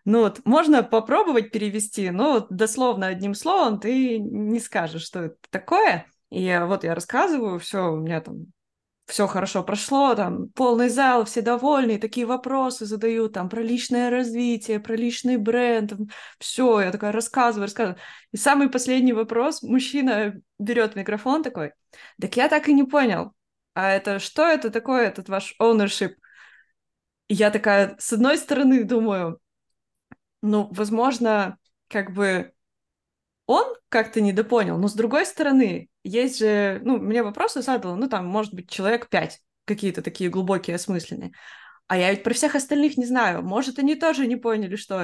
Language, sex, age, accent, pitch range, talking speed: Russian, female, 20-39, native, 195-250 Hz, 155 wpm